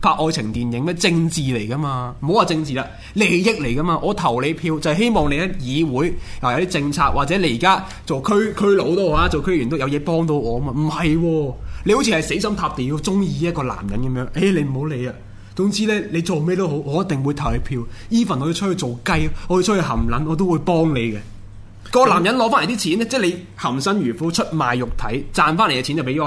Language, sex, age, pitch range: Chinese, male, 20-39, 120-180 Hz